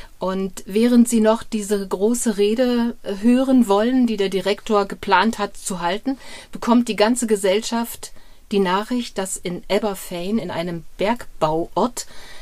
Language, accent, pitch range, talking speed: German, German, 185-220 Hz, 135 wpm